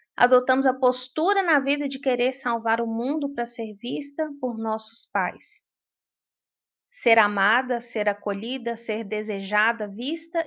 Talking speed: 130 wpm